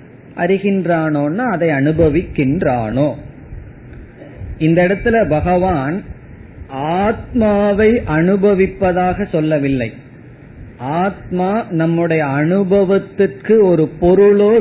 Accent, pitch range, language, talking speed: native, 145-190 Hz, Tamil, 55 wpm